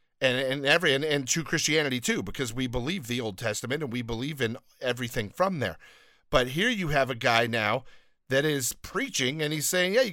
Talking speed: 215 wpm